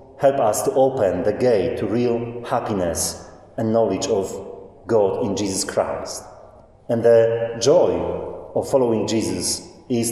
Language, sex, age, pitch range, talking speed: English, male, 30-49, 110-170 Hz, 135 wpm